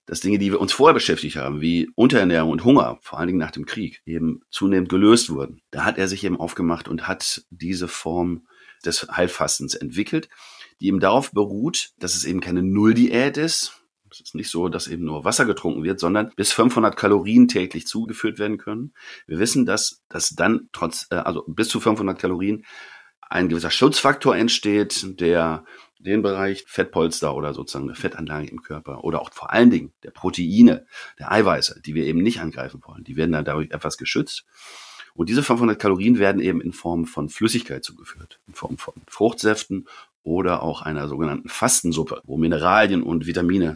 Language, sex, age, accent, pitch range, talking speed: German, male, 40-59, German, 80-105 Hz, 180 wpm